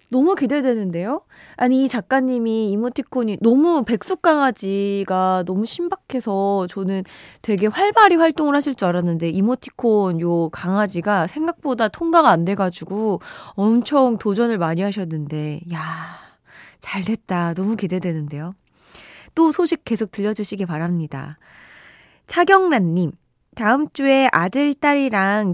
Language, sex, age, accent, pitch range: Korean, female, 20-39, native, 175-265 Hz